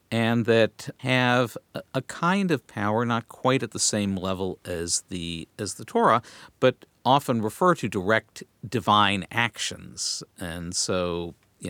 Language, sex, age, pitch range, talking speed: English, male, 50-69, 100-130 Hz, 145 wpm